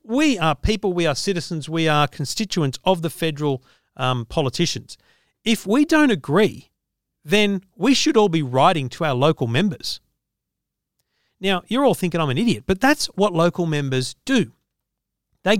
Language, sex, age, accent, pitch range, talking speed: English, male, 40-59, Australian, 150-215 Hz, 160 wpm